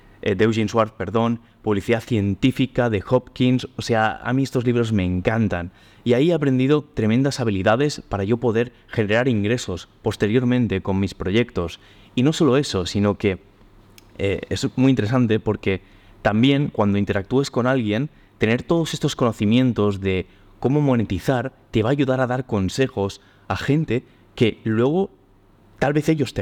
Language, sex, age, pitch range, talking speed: Spanish, male, 20-39, 100-130 Hz, 155 wpm